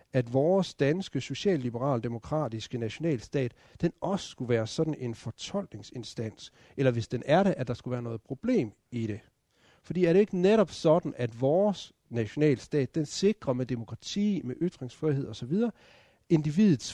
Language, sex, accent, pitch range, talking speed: Danish, male, native, 120-170 Hz, 150 wpm